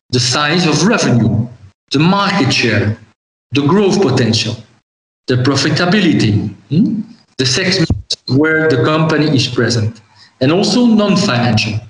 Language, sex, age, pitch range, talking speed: Dutch, male, 50-69, 130-175 Hz, 115 wpm